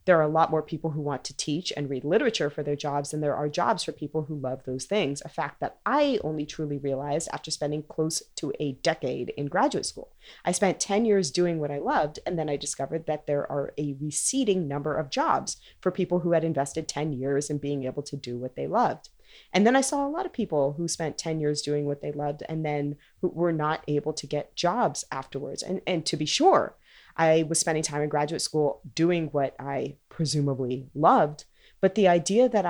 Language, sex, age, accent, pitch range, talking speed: English, female, 30-49, American, 145-165 Hz, 225 wpm